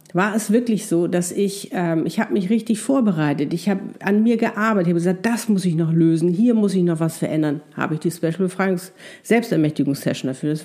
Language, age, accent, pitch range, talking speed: German, 50-69, German, 175-230 Hz, 225 wpm